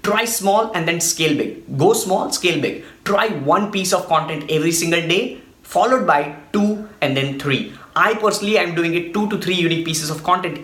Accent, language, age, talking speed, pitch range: Indian, English, 20-39, 205 wpm, 150-195 Hz